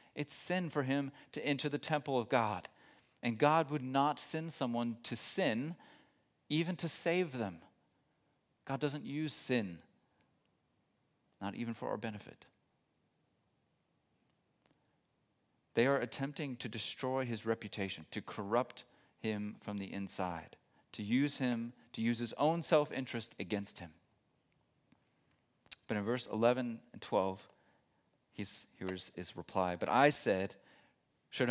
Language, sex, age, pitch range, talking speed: English, male, 40-59, 115-150 Hz, 130 wpm